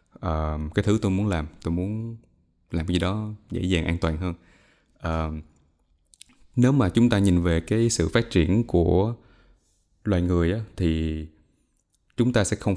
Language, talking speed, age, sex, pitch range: Vietnamese, 175 wpm, 20-39, male, 80-105 Hz